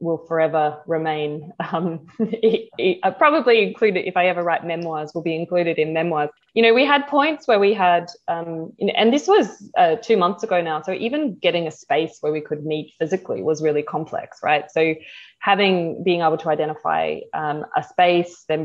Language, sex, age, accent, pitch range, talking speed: English, female, 20-39, Australian, 160-190 Hz, 185 wpm